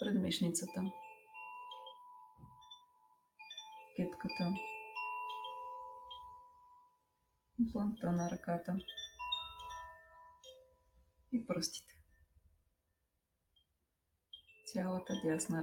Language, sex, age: Bulgarian, female, 30-49